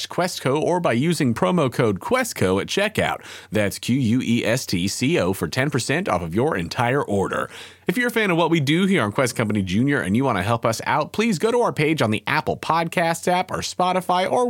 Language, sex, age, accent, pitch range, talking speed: English, male, 30-49, American, 110-175 Hz, 240 wpm